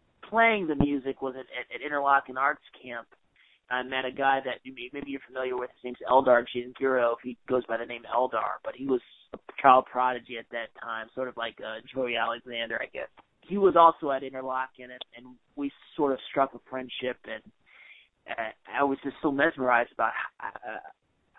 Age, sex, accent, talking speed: 30-49, male, American, 195 wpm